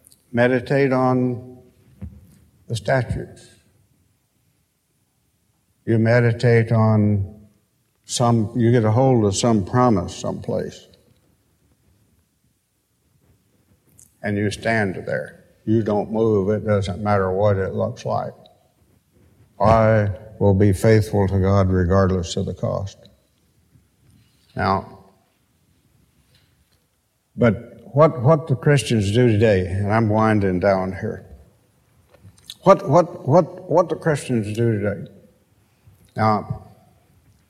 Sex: male